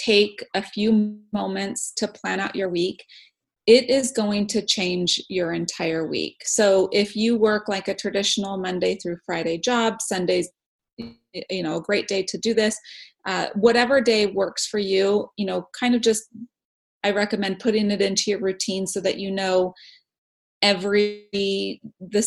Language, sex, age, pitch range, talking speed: English, female, 30-49, 190-220 Hz, 165 wpm